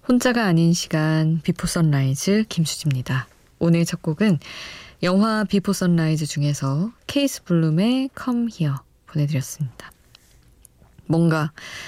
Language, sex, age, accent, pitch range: Korean, female, 20-39, native, 150-185 Hz